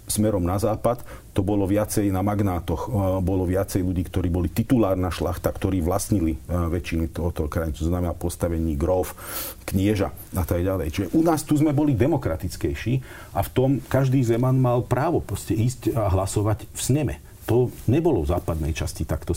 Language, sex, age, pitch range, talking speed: Slovak, male, 40-59, 95-125 Hz, 160 wpm